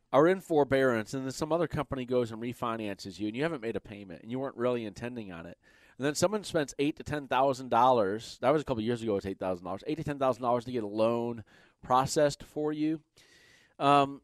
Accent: American